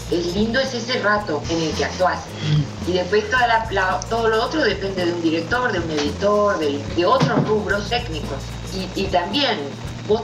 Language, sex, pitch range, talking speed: Spanish, female, 155-215 Hz, 170 wpm